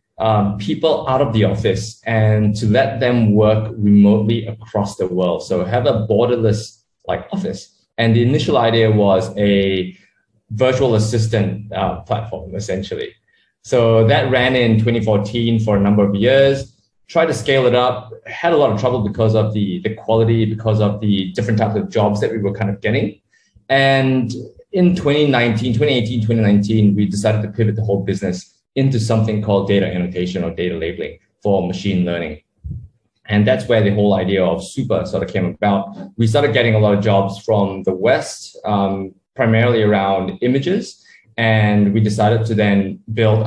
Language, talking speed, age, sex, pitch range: English, 175 wpm, 20-39, male, 100-115 Hz